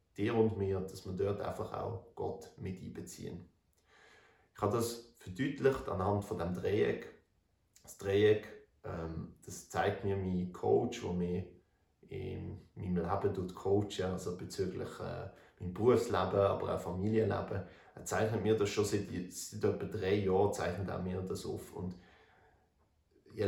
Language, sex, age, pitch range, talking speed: German, male, 30-49, 90-105 Hz, 150 wpm